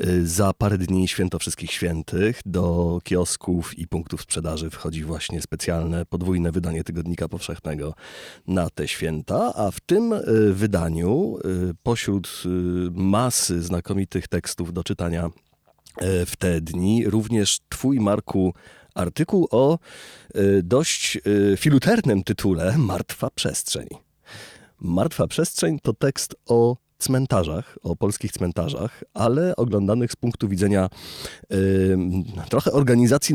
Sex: male